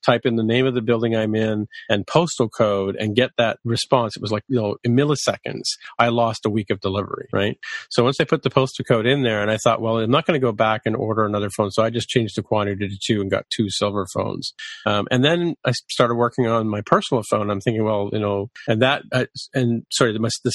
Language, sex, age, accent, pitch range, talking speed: English, male, 40-59, American, 110-130 Hz, 255 wpm